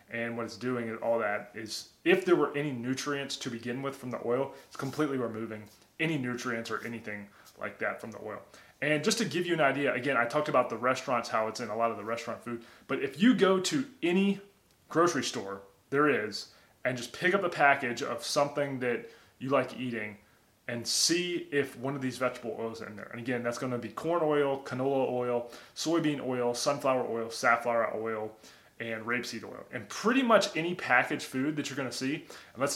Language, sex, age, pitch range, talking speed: English, male, 20-39, 120-150 Hz, 210 wpm